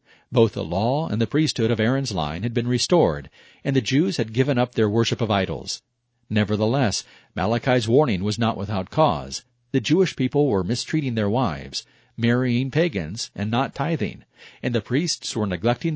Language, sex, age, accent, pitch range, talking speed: English, male, 50-69, American, 110-130 Hz, 175 wpm